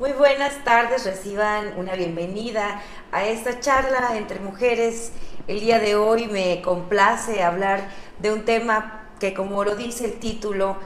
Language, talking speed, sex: Spanish, 150 wpm, female